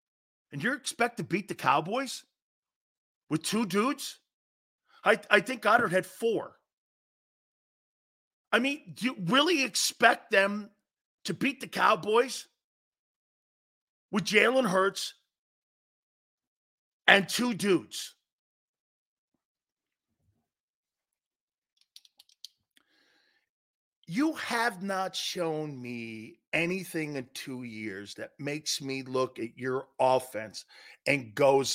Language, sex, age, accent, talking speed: English, male, 40-59, American, 95 wpm